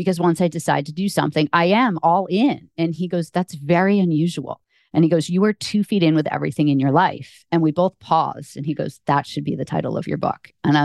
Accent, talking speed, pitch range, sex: American, 260 wpm, 150-175 Hz, female